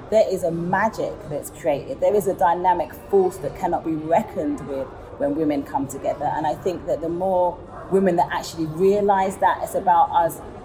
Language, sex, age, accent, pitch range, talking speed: English, female, 30-49, British, 160-205 Hz, 190 wpm